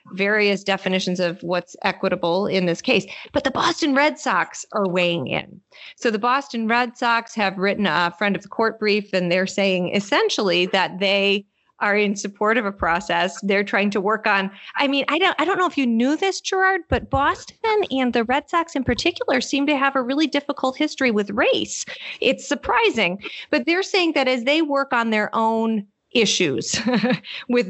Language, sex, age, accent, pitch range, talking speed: English, female, 40-59, American, 180-245 Hz, 195 wpm